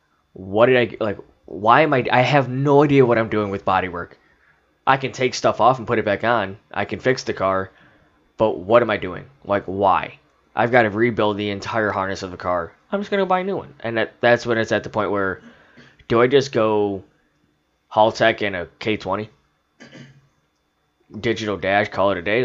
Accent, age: American, 10-29